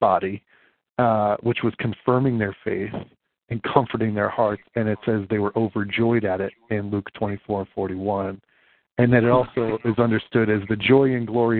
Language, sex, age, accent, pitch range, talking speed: English, male, 40-59, American, 105-125 Hz, 180 wpm